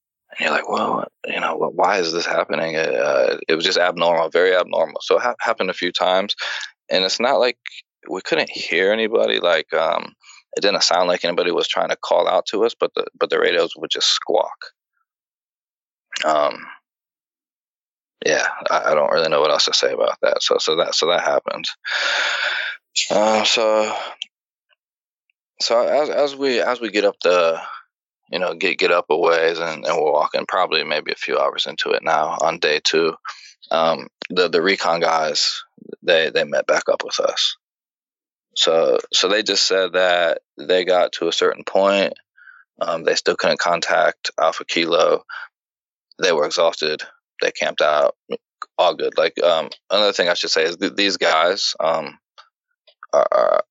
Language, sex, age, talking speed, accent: English, male, 20-39, 180 wpm, American